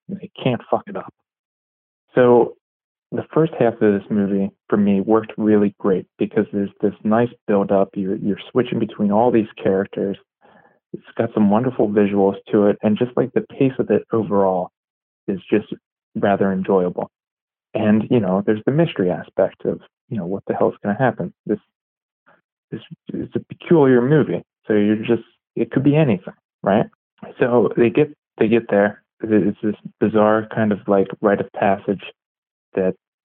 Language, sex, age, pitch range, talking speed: English, male, 20-39, 100-110 Hz, 170 wpm